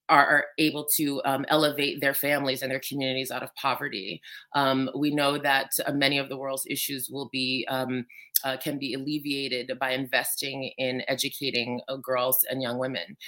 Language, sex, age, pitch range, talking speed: English, female, 30-49, 135-165 Hz, 170 wpm